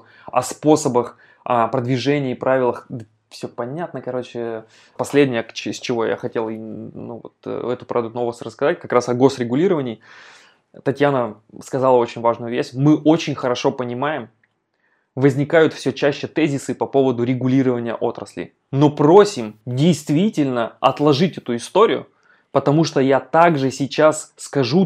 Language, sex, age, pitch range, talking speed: Russian, male, 20-39, 125-150 Hz, 125 wpm